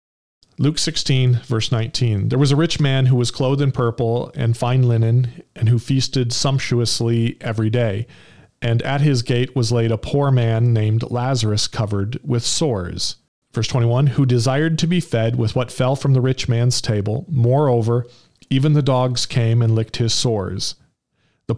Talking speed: 170 wpm